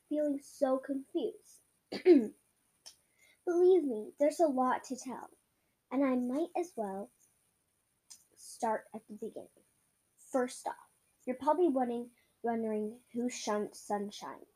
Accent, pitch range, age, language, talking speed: American, 225-290 Hz, 10-29, English, 110 wpm